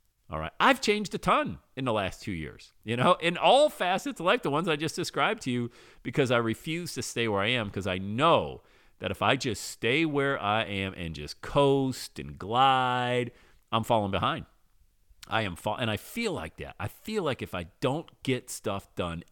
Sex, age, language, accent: male, 40-59, English, American